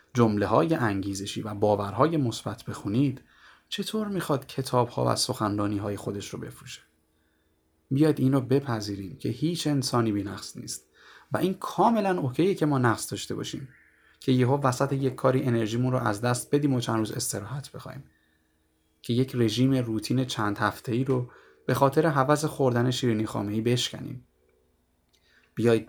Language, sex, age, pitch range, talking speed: Persian, male, 30-49, 100-130 Hz, 150 wpm